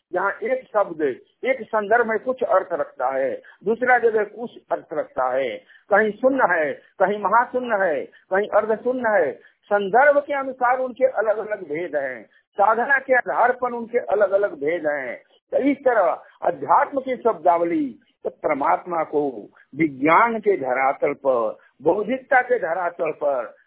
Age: 50-69